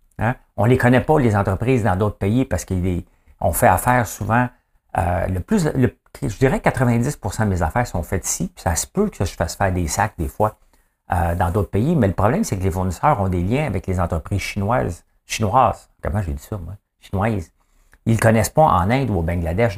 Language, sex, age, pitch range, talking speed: English, male, 60-79, 90-120 Hz, 225 wpm